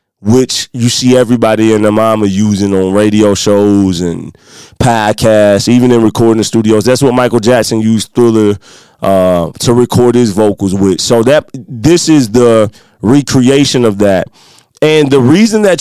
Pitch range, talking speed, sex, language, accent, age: 110-130 Hz, 155 wpm, male, English, American, 20-39